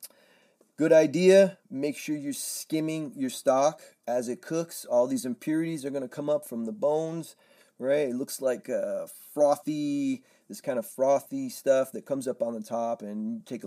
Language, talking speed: English, 180 wpm